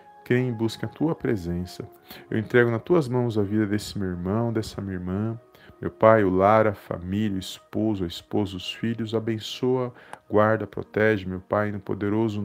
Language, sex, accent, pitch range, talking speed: Portuguese, male, Brazilian, 100-120 Hz, 180 wpm